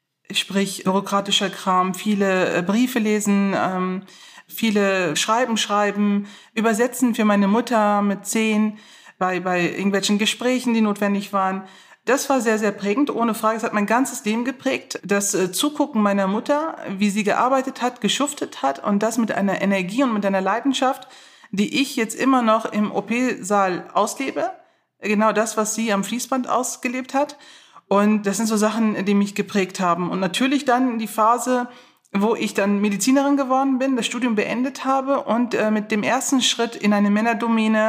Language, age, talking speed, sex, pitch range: German, 30-49, 165 wpm, female, 200-245 Hz